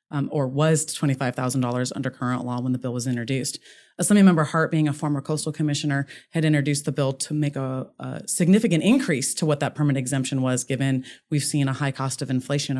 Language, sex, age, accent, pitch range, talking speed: English, female, 30-49, American, 130-150 Hz, 200 wpm